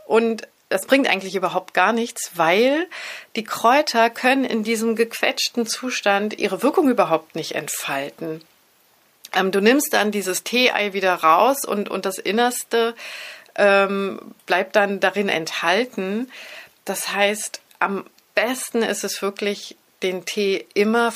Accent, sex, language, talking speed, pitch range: German, female, German, 135 wpm, 170-225 Hz